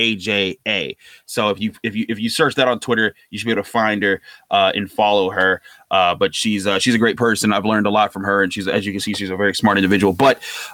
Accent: American